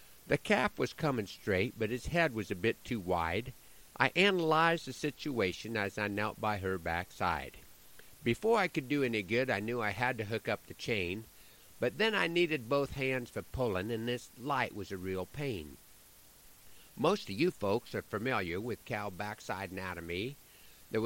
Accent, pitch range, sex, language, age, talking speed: American, 100-140 Hz, male, English, 50-69, 180 wpm